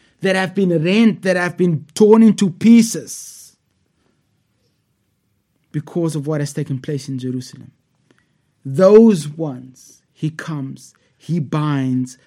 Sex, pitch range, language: male, 150-195 Hz, English